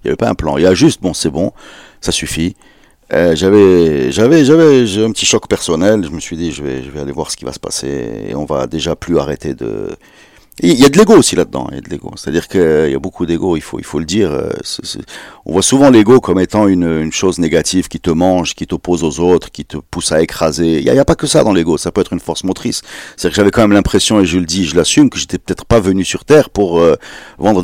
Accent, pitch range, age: French, 85-115 Hz, 50-69